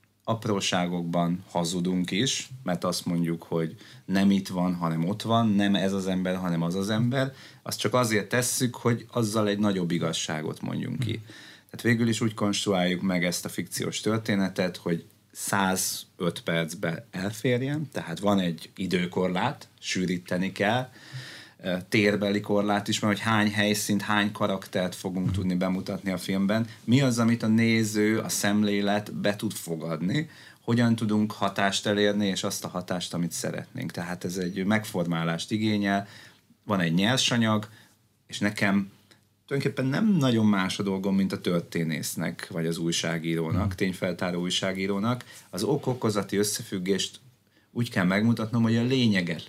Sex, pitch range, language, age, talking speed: male, 95-110 Hz, Hungarian, 30-49, 145 wpm